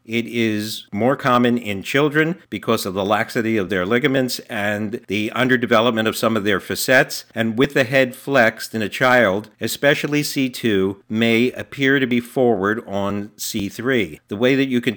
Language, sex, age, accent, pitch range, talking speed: English, male, 50-69, American, 100-125 Hz, 170 wpm